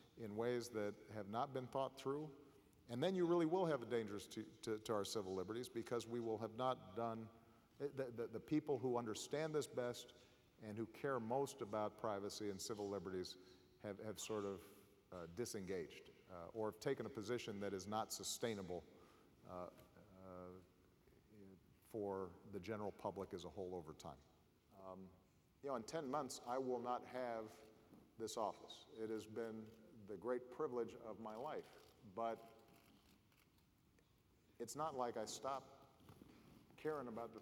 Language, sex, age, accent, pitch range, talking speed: Swedish, male, 50-69, American, 95-120 Hz, 165 wpm